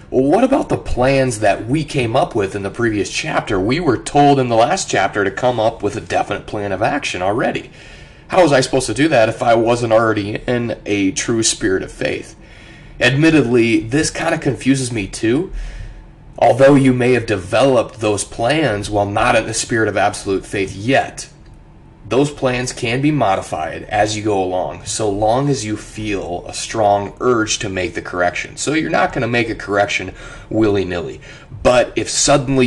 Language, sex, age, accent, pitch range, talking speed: English, male, 30-49, American, 100-125 Hz, 185 wpm